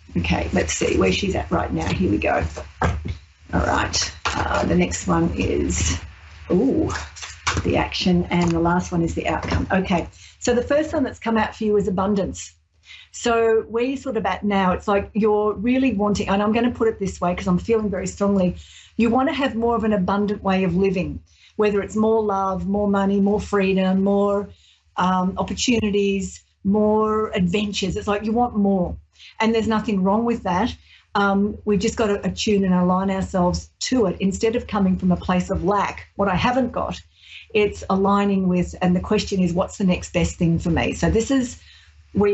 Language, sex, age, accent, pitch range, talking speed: English, female, 40-59, Australian, 180-215 Hz, 200 wpm